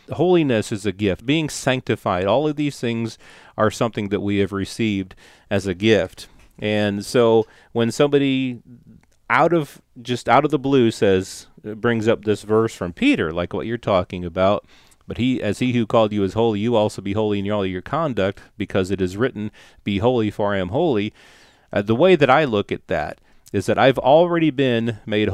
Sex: male